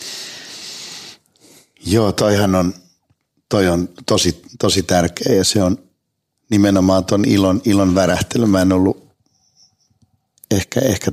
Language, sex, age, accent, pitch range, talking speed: Finnish, male, 60-79, native, 90-105 Hz, 115 wpm